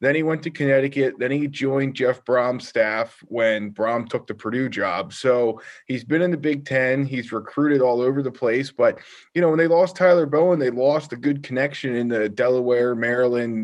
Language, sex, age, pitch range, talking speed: English, male, 20-39, 120-145 Hz, 205 wpm